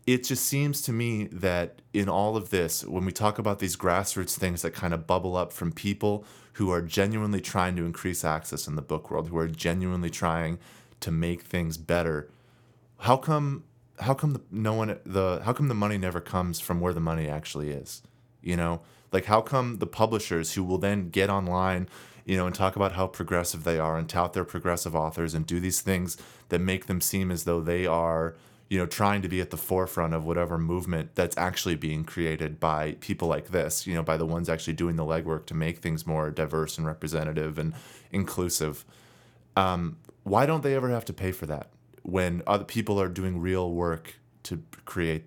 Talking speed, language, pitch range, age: 205 wpm, English, 85-105 Hz, 30-49